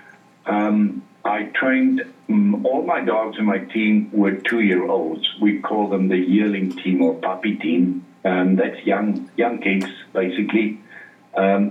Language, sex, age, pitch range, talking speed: English, male, 50-69, 95-110 Hz, 145 wpm